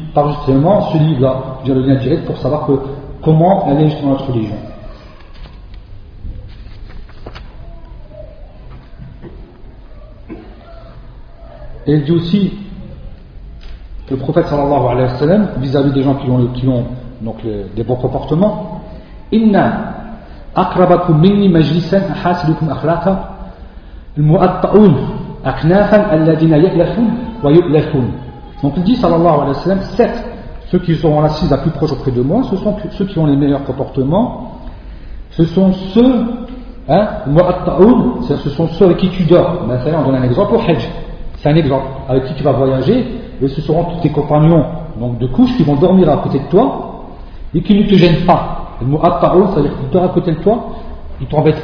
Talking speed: 165 wpm